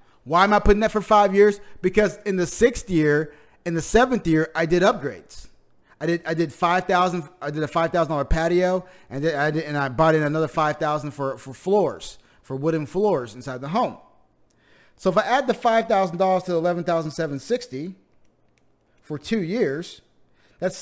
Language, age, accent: English, 30-49, American